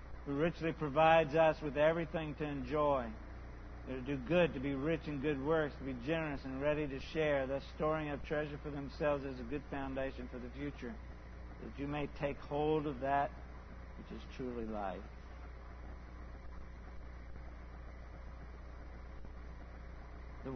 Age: 60-79